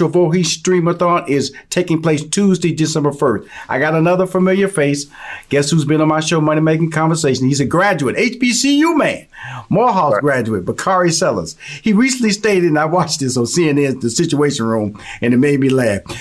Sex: male